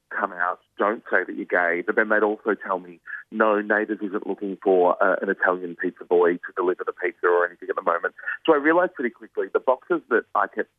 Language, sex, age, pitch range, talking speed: English, male, 40-59, 95-115 Hz, 235 wpm